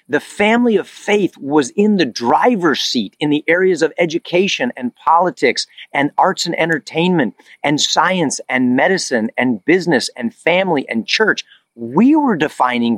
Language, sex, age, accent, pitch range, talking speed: English, male, 40-59, American, 135-200 Hz, 155 wpm